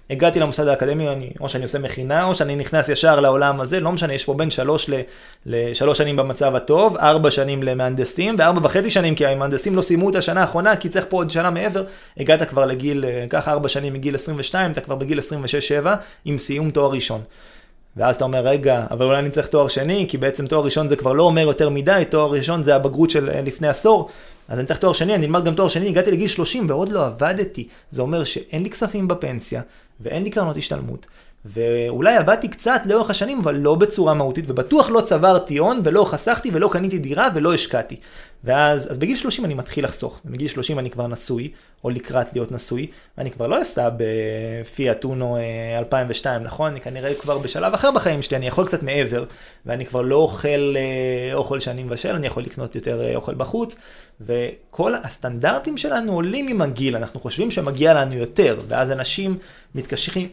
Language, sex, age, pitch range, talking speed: Hebrew, male, 20-39, 130-180 Hz, 195 wpm